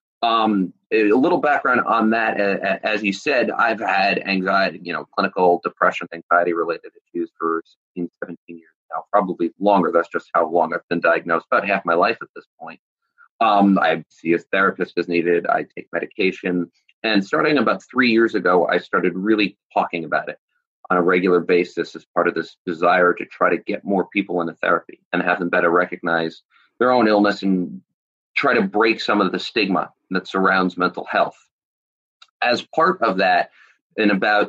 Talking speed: 180 wpm